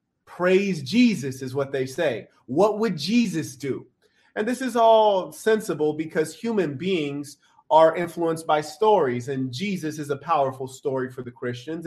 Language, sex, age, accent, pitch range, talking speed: English, male, 30-49, American, 145-195 Hz, 155 wpm